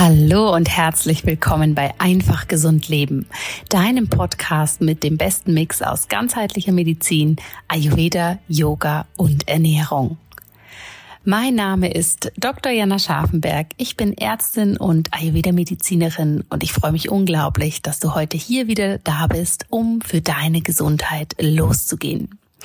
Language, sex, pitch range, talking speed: German, female, 160-195 Hz, 130 wpm